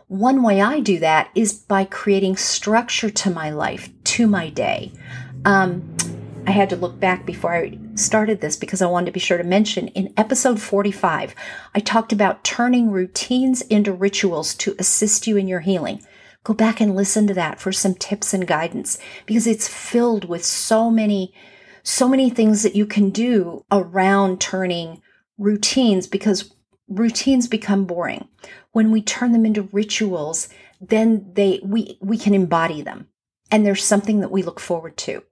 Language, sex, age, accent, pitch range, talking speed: English, female, 40-59, American, 185-225 Hz, 170 wpm